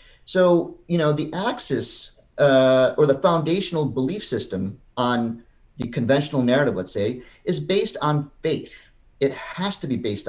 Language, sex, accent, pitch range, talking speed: English, male, American, 115-175 Hz, 150 wpm